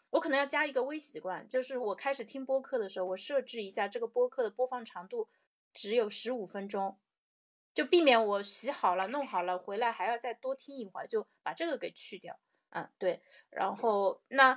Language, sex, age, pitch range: Chinese, female, 30-49, 195-270 Hz